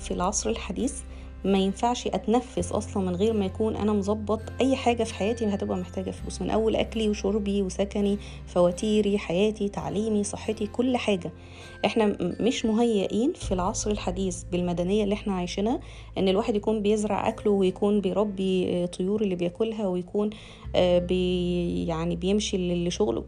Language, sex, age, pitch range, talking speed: Arabic, female, 20-39, 180-230 Hz, 145 wpm